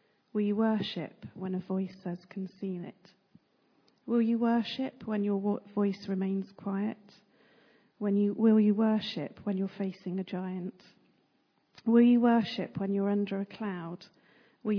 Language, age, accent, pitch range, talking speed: English, 40-59, British, 190-215 Hz, 145 wpm